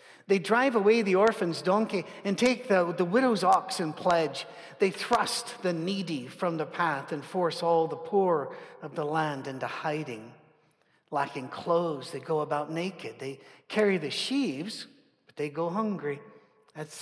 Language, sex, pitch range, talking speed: English, male, 165-220 Hz, 160 wpm